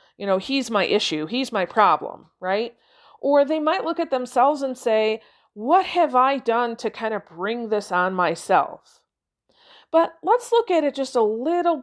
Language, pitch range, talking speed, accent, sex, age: English, 205-280 Hz, 185 wpm, American, female, 40-59